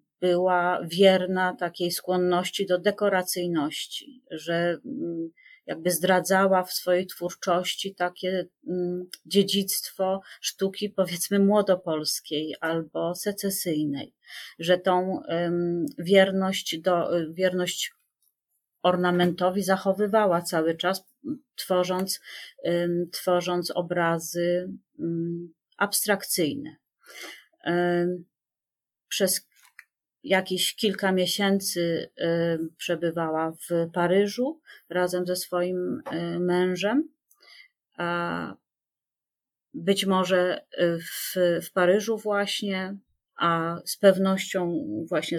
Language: Polish